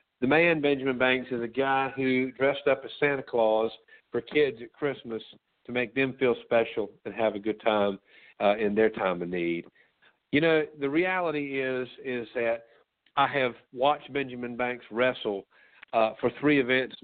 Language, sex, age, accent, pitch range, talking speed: English, male, 50-69, American, 110-140 Hz, 175 wpm